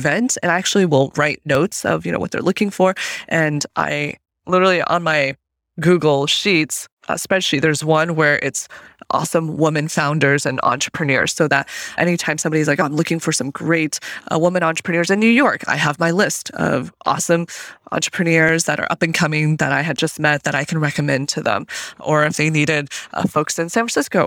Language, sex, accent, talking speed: English, female, American, 200 wpm